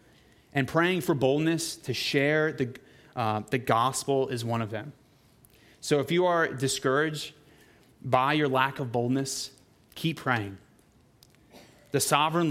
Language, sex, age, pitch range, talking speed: English, male, 30-49, 125-155 Hz, 135 wpm